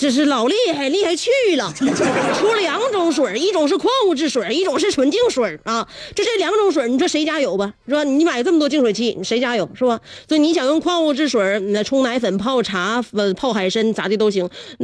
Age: 30-49